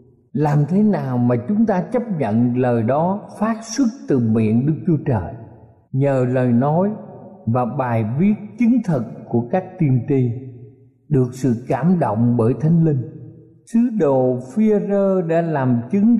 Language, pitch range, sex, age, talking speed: Vietnamese, 130-195 Hz, male, 50-69, 155 wpm